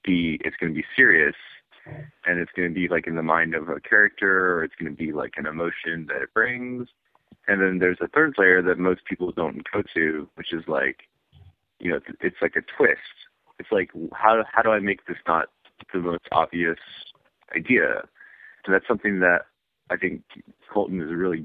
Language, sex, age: English, male, 30-49